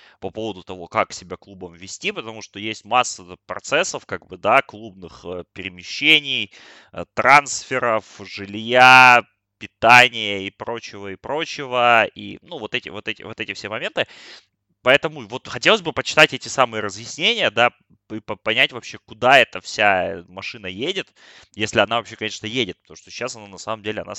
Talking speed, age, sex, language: 160 wpm, 20-39, male, Russian